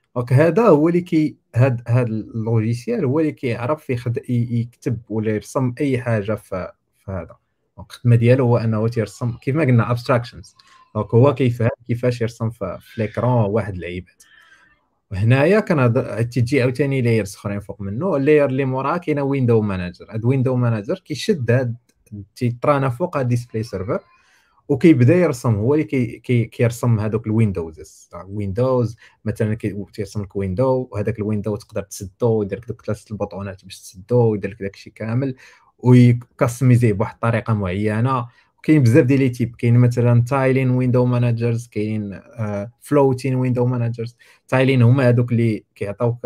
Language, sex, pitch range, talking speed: Arabic, male, 110-130 Hz, 150 wpm